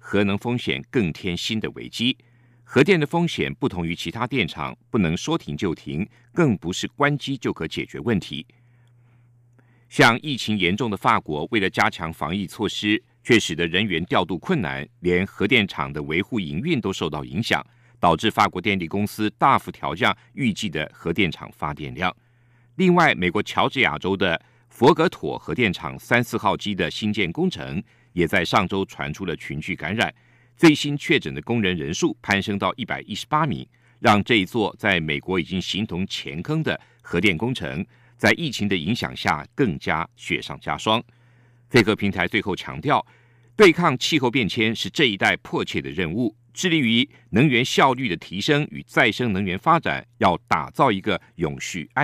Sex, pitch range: male, 100-125 Hz